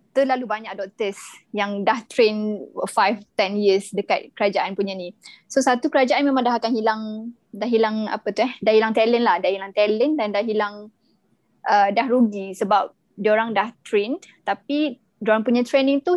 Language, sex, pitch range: Malay, female, 200-235 Hz